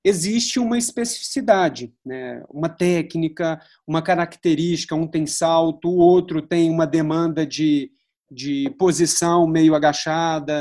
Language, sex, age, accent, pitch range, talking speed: English, male, 40-59, Brazilian, 150-195 Hz, 120 wpm